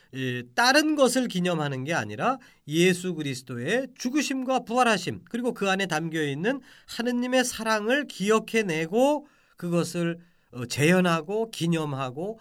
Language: Korean